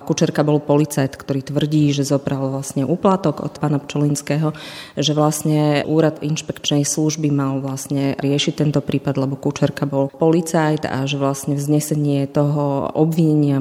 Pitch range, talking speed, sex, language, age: 140-155 Hz, 140 wpm, female, Slovak, 30-49